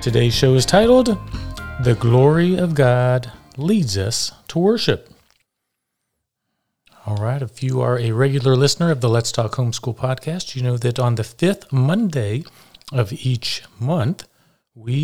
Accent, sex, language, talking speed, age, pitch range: American, male, English, 145 wpm, 40-59, 115-150 Hz